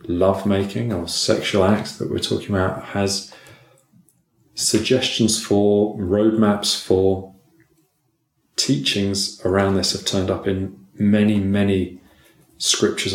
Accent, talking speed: British, 105 wpm